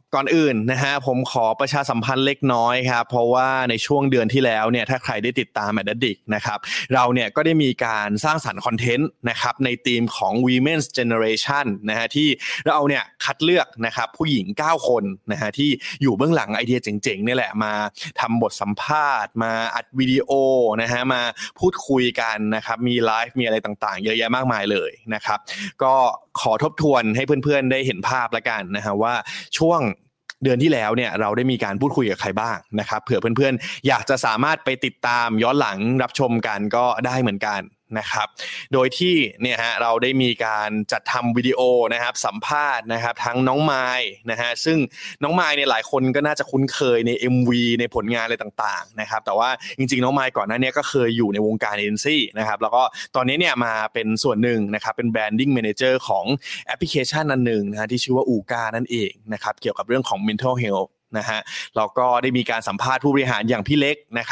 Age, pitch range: 20-39, 115-135 Hz